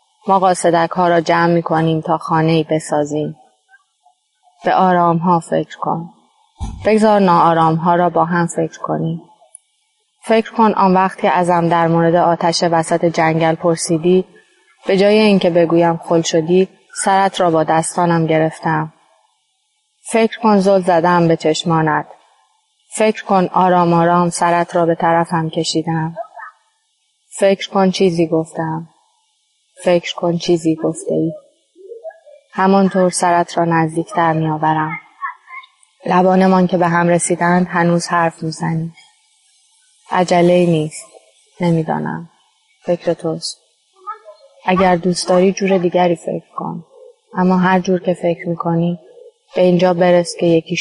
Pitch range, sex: 165-225 Hz, female